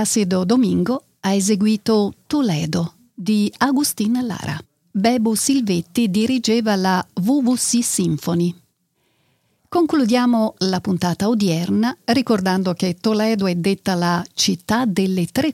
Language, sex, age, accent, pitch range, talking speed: Italian, female, 50-69, native, 185-235 Hz, 105 wpm